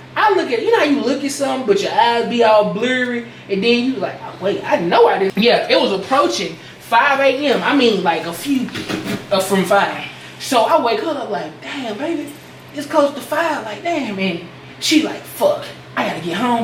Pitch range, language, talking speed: 185-240 Hz, English, 225 wpm